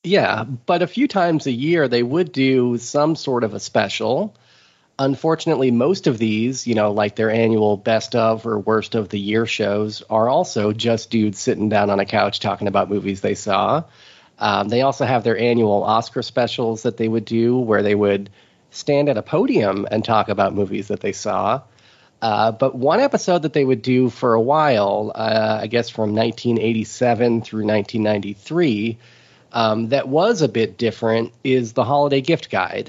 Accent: American